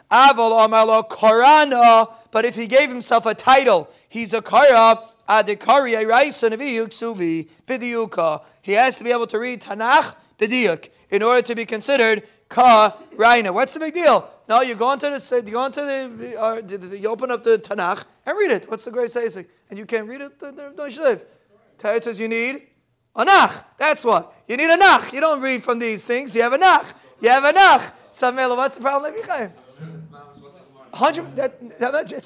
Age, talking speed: 30-49, 145 wpm